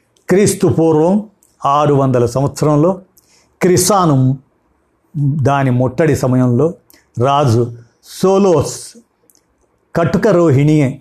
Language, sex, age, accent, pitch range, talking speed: Telugu, male, 50-69, native, 120-160 Hz, 65 wpm